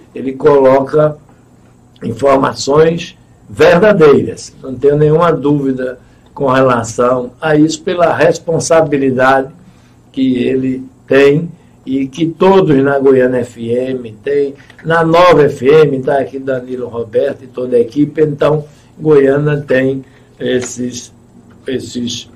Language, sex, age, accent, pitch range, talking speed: Portuguese, male, 60-79, Brazilian, 130-165 Hz, 105 wpm